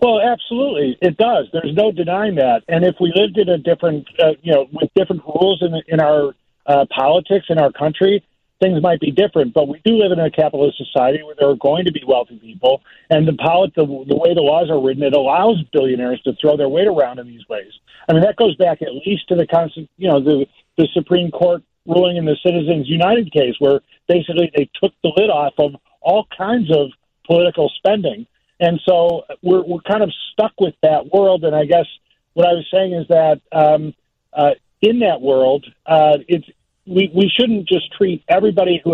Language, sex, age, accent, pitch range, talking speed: English, male, 50-69, American, 150-190 Hz, 215 wpm